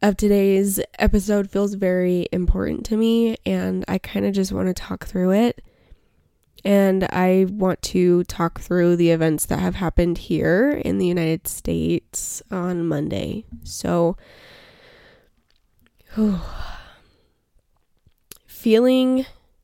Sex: female